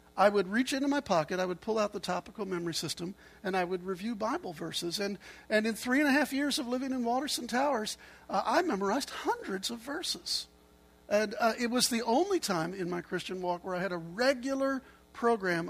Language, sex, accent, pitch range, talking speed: English, male, American, 165-225 Hz, 215 wpm